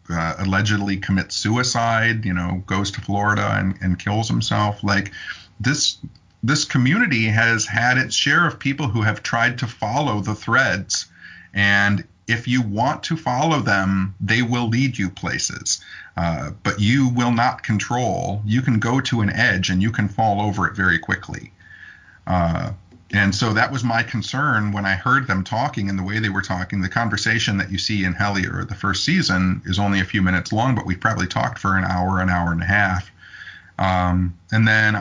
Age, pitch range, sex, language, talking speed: 50-69, 95-120 Hz, male, English, 190 wpm